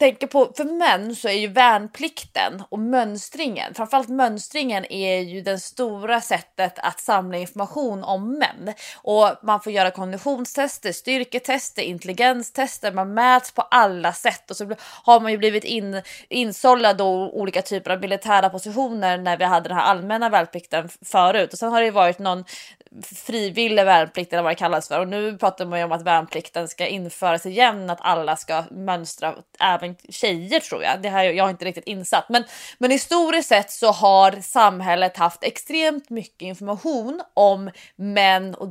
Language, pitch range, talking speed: English, 185-235 Hz, 170 wpm